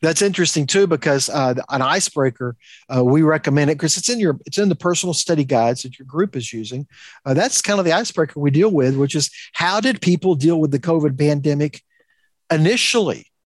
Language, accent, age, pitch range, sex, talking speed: English, American, 50-69, 135-180 Hz, male, 210 wpm